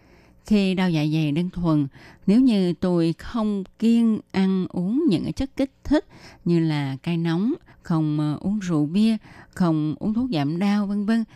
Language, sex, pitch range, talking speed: Vietnamese, female, 155-200 Hz, 170 wpm